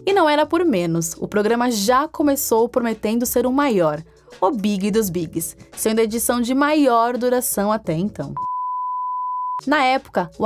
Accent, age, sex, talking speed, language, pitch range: Brazilian, 20-39, female, 160 wpm, Portuguese, 220-290 Hz